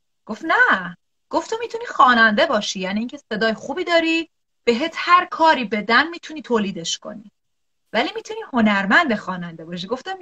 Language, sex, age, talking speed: Persian, female, 30-49, 145 wpm